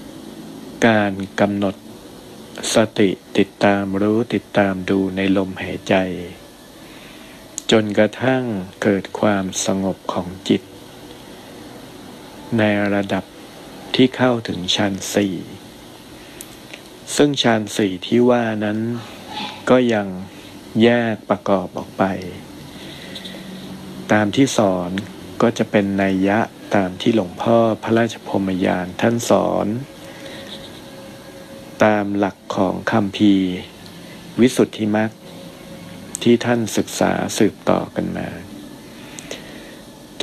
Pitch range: 95-115 Hz